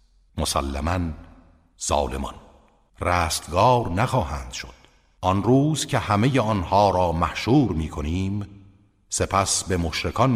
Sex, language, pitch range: male, Persian, 80-105 Hz